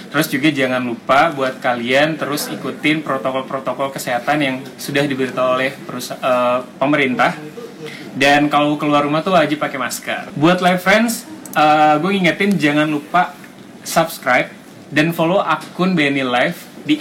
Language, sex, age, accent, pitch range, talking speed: Indonesian, male, 20-39, native, 140-180 Hz, 140 wpm